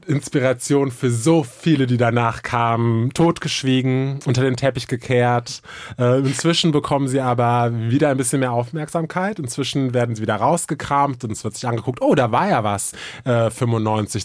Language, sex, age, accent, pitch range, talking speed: German, male, 20-39, German, 120-145 Hz, 165 wpm